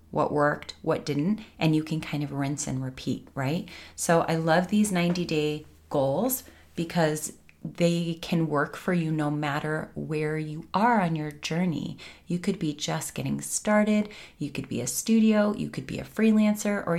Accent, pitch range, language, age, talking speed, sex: American, 145-180 Hz, English, 30-49, 175 wpm, female